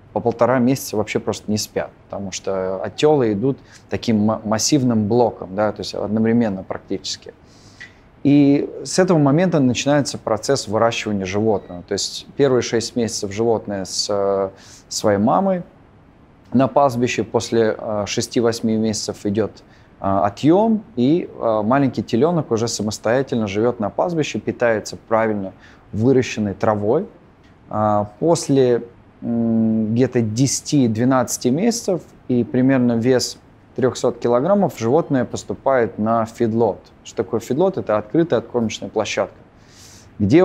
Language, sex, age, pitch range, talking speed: Russian, male, 20-39, 105-130 Hz, 110 wpm